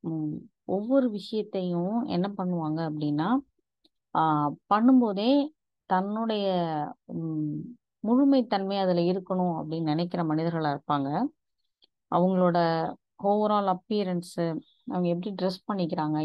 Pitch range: 170-235 Hz